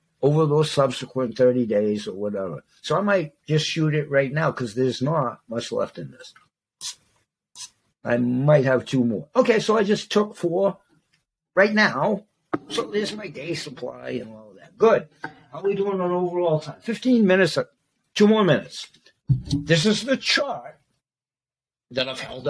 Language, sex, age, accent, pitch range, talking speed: English, male, 60-79, American, 130-200 Hz, 170 wpm